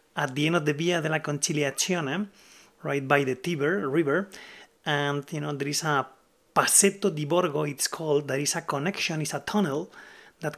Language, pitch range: English, 145-175 Hz